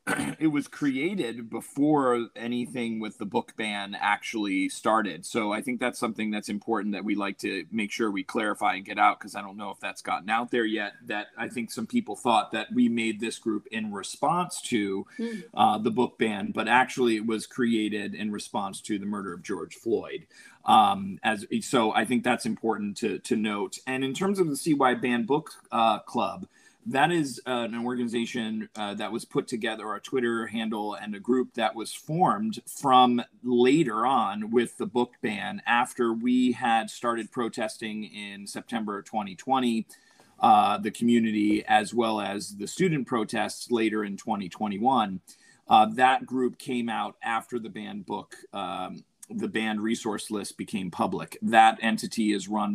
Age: 30-49